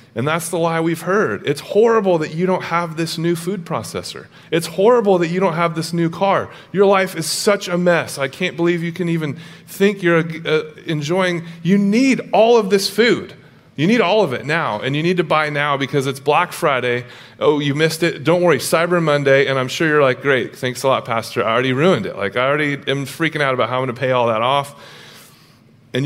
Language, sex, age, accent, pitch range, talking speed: English, male, 30-49, American, 130-170 Hz, 230 wpm